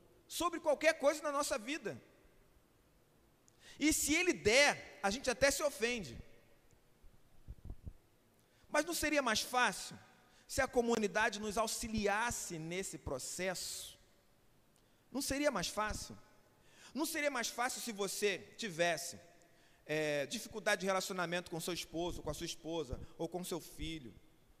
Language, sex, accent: Portuguese, male, Brazilian